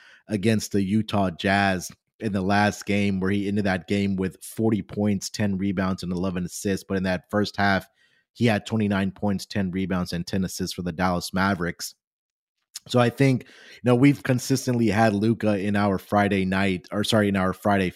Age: 30-49